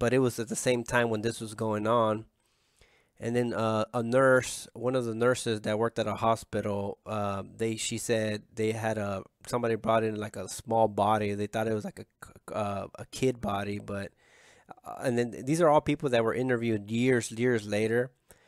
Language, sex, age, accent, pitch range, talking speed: English, male, 20-39, American, 105-125 Hz, 210 wpm